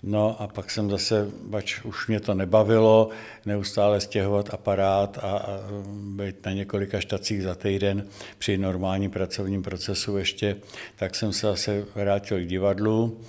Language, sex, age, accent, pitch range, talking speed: Czech, male, 60-79, native, 95-110 Hz, 150 wpm